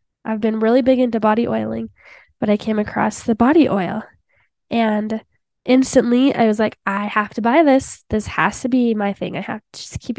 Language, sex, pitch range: English, female, 215-255 Hz